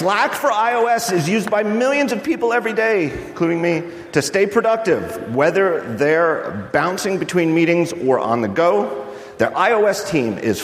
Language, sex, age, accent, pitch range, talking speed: English, male, 40-59, American, 115-170 Hz, 165 wpm